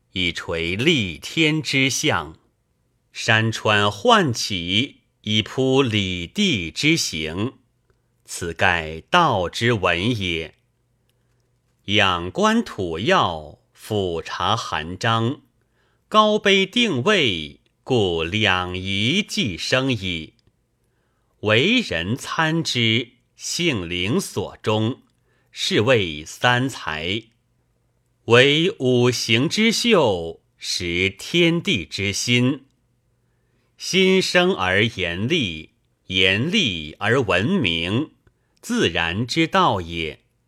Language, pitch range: Chinese, 100-135 Hz